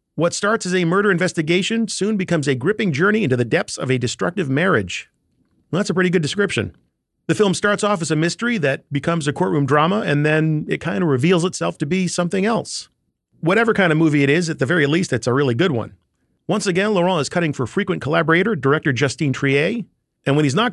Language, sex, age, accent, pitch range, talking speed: English, male, 40-59, American, 150-200 Hz, 225 wpm